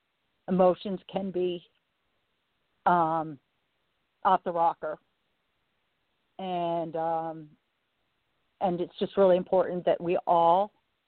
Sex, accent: female, American